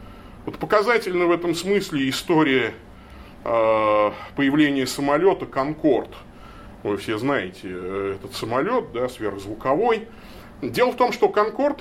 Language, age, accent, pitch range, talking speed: Russian, 30-49, native, 125-205 Hz, 105 wpm